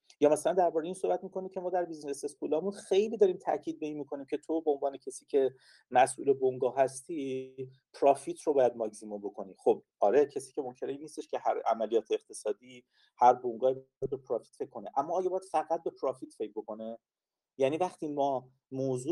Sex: male